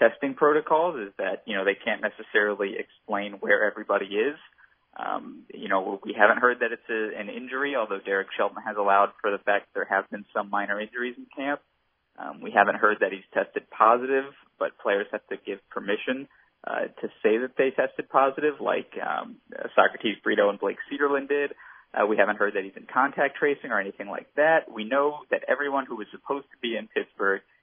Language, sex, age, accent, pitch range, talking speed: English, male, 20-39, American, 100-150 Hz, 200 wpm